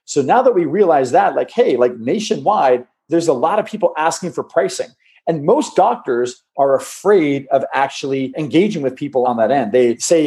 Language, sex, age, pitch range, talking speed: English, male, 40-59, 140-185 Hz, 195 wpm